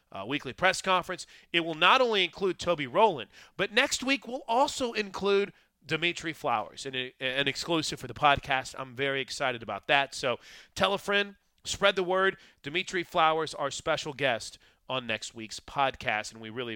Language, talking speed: English, 175 wpm